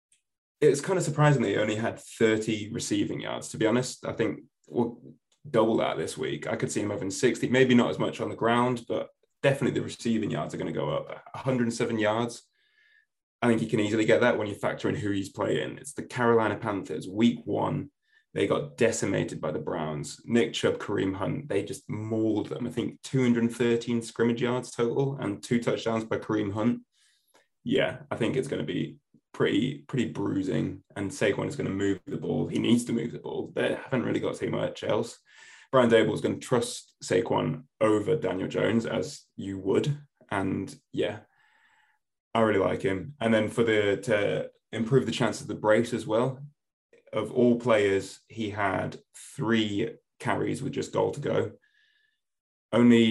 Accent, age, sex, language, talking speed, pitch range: British, 20-39, male, English, 190 wpm, 110-135 Hz